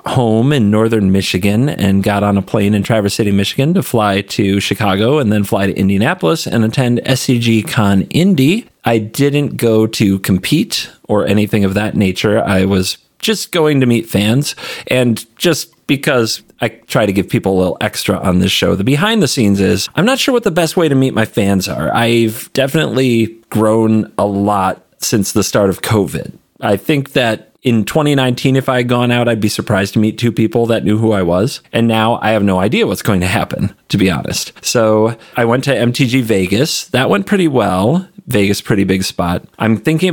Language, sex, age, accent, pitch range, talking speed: English, male, 40-59, American, 100-135 Hz, 205 wpm